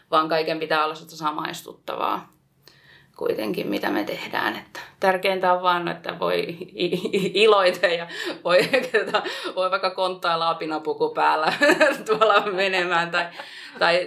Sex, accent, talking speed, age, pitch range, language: female, native, 115 wpm, 20-39, 160-185 Hz, Finnish